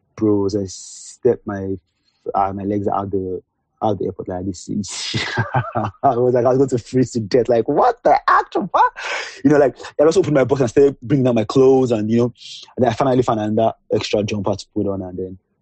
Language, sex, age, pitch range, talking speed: English, male, 30-49, 100-115 Hz, 225 wpm